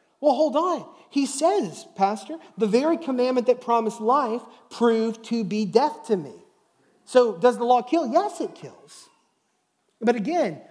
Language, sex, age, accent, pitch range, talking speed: English, male, 30-49, American, 185-240 Hz, 155 wpm